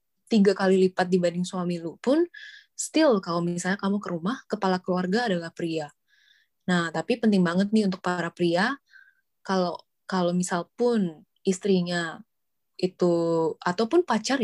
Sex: female